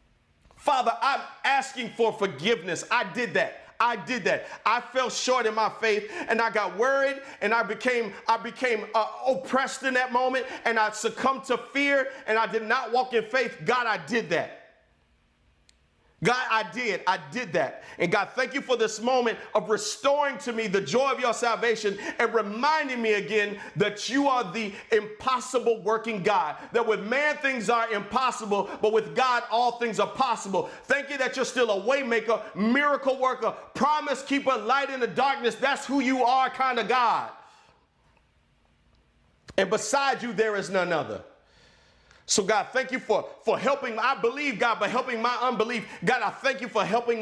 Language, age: English, 40-59